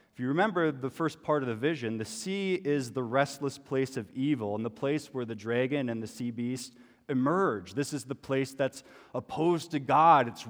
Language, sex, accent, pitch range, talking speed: English, male, American, 110-140 Hz, 205 wpm